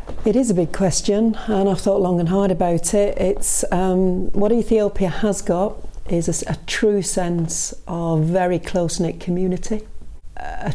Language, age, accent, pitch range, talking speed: English, 40-59, British, 170-195 Hz, 160 wpm